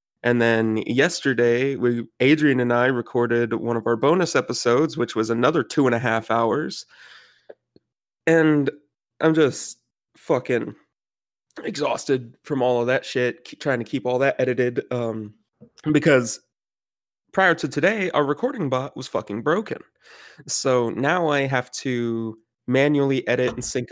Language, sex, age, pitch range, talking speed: English, male, 20-39, 115-135 Hz, 145 wpm